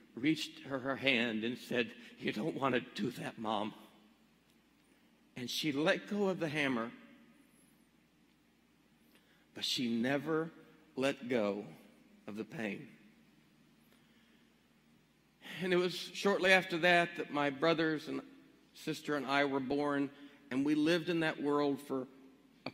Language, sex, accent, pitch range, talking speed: English, male, American, 135-170 Hz, 130 wpm